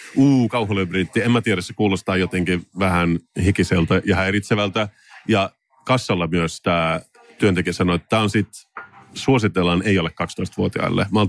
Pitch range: 95-120 Hz